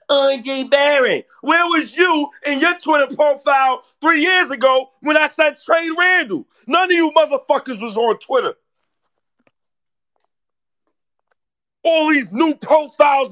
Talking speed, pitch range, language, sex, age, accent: 125 wpm, 265-335 Hz, English, male, 40-59, American